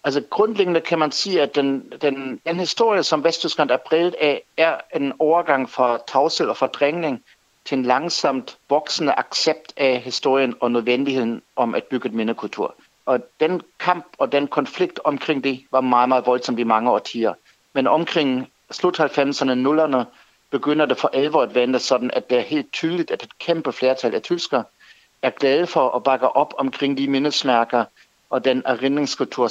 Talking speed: 170 wpm